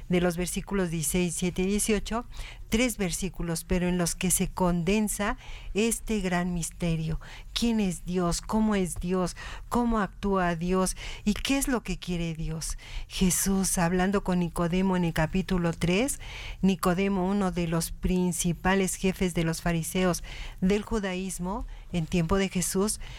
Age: 50-69